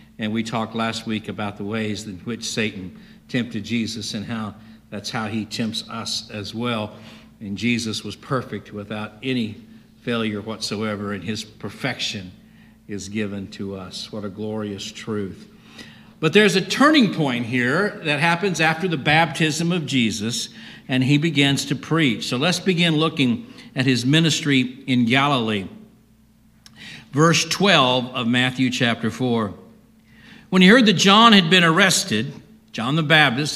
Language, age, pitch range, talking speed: English, 60-79, 115-165 Hz, 150 wpm